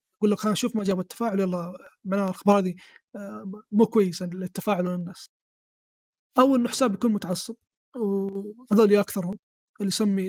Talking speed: 150 wpm